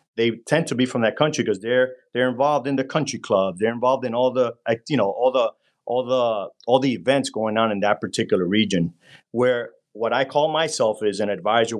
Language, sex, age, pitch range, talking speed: English, male, 40-59, 105-140 Hz, 220 wpm